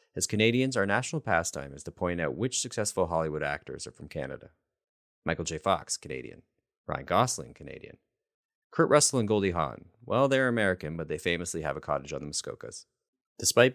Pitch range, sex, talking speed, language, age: 80-105 Hz, male, 180 wpm, English, 30-49